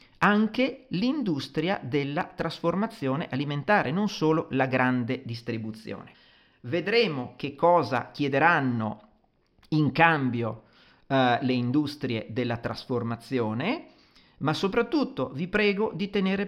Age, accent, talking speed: 40-59, native, 95 wpm